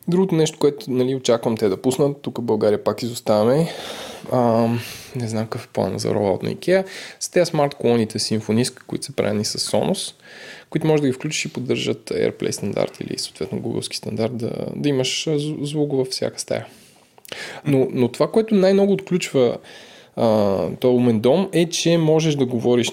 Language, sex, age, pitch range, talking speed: Bulgarian, male, 20-39, 120-155 Hz, 175 wpm